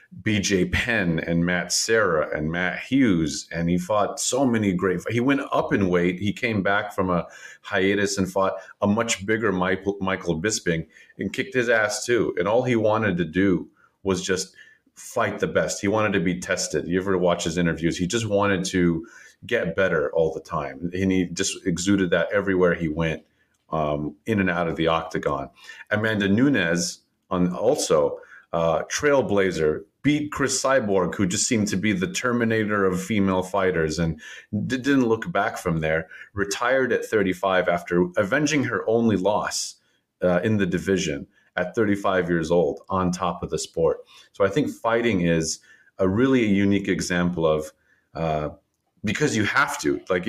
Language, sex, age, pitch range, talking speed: English, male, 30-49, 85-110 Hz, 170 wpm